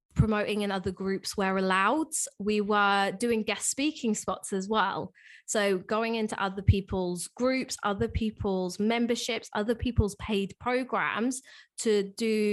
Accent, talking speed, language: British, 140 wpm, English